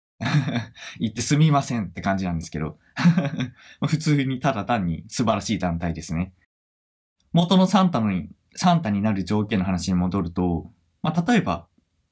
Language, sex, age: Japanese, male, 20-39